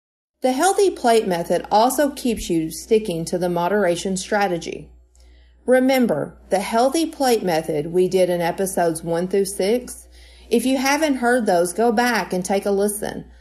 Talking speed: 155 wpm